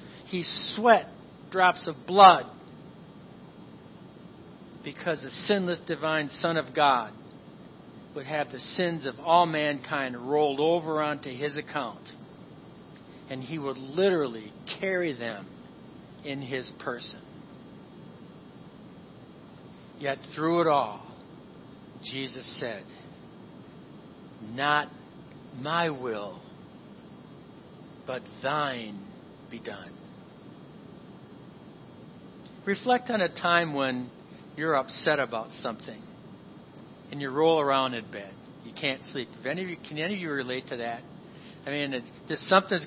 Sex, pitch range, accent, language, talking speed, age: male, 135-170 Hz, American, English, 105 wpm, 50-69